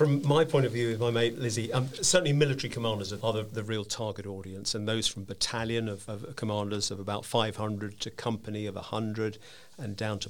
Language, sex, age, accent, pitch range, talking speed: English, male, 50-69, British, 105-130 Hz, 205 wpm